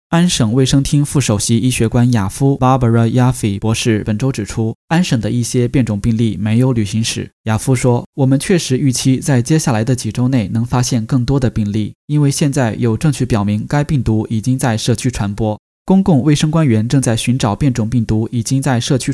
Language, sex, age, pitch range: Chinese, male, 10-29, 115-140 Hz